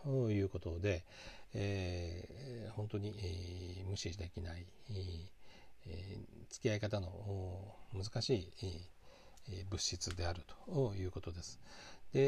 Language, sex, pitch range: Japanese, male, 90-115 Hz